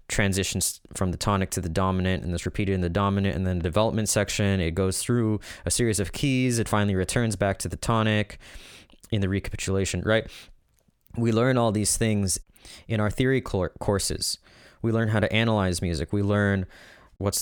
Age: 20-39